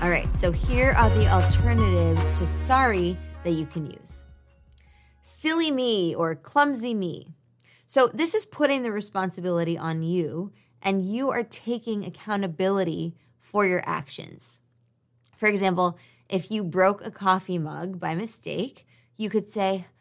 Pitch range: 140-210 Hz